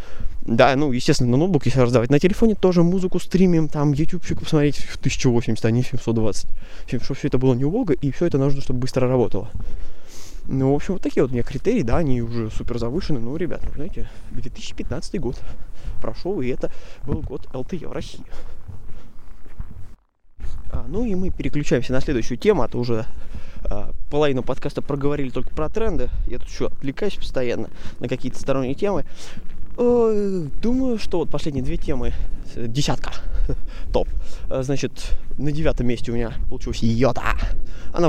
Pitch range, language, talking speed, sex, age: 115-150 Hz, Russian, 165 wpm, male, 20-39